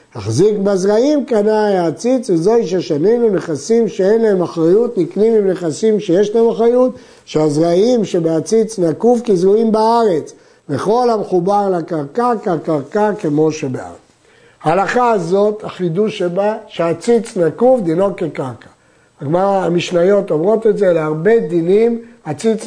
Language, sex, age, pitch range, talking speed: Hebrew, male, 50-69, 170-225 Hz, 120 wpm